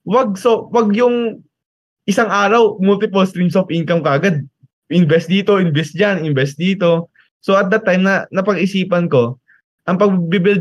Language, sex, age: Filipino, male, 20-39